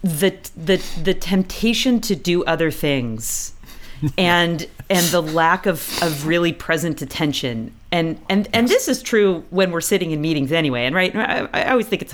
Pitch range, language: 135-175 Hz, English